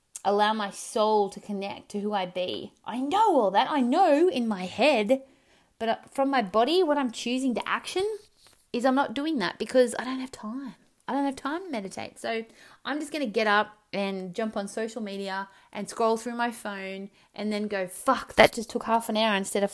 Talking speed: 220 wpm